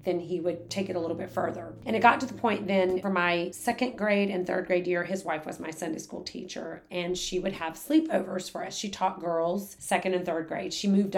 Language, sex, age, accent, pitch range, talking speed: English, female, 30-49, American, 175-195 Hz, 250 wpm